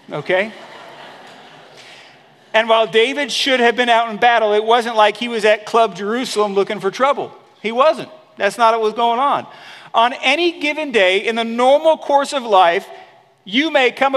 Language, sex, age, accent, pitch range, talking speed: English, male, 40-59, American, 195-245 Hz, 180 wpm